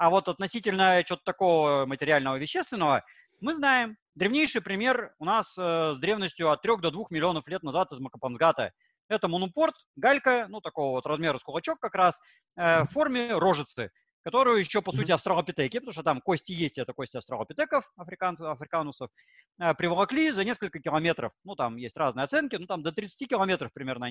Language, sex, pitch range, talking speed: Russian, male, 155-235 Hz, 175 wpm